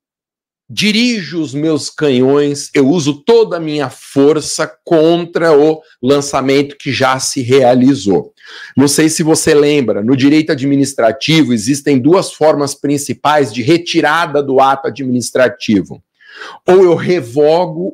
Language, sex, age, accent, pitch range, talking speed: Portuguese, male, 50-69, Brazilian, 135-170 Hz, 125 wpm